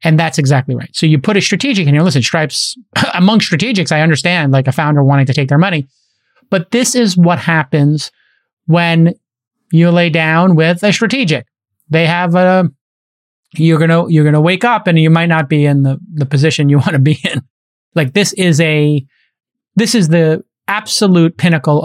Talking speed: 190 wpm